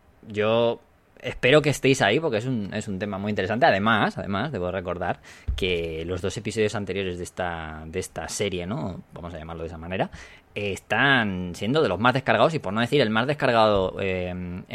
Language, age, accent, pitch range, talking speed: Spanish, 20-39, Spanish, 95-125 Hz, 195 wpm